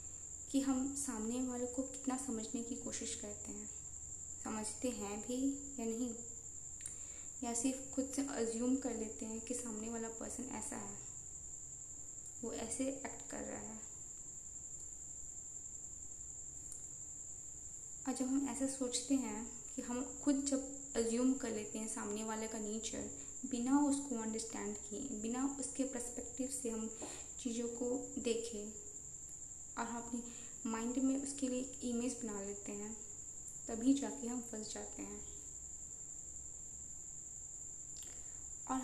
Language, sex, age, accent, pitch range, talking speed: Hindi, female, 20-39, native, 225-260 Hz, 130 wpm